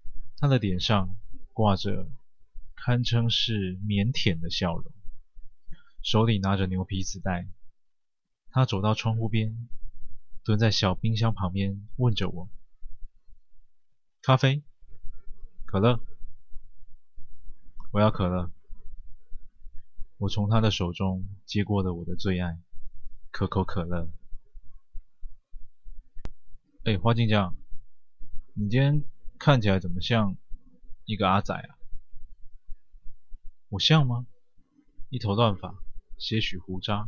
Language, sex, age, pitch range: Chinese, male, 20-39, 100-115 Hz